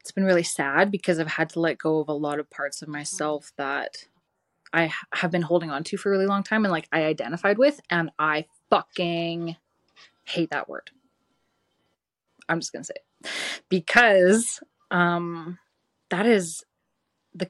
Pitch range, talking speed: 160-185 Hz, 175 wpm